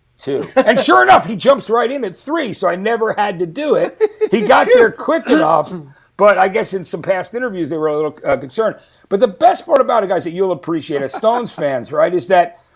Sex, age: male, 50-69